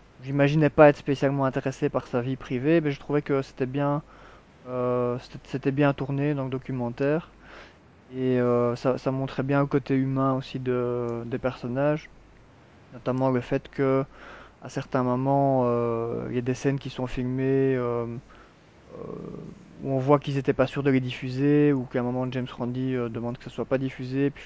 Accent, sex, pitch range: French, male, 120-140 Hz